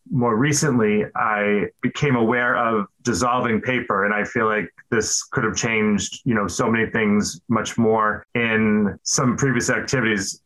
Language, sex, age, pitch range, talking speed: English, male, 30-49, 115-130 Hz, 155 wpm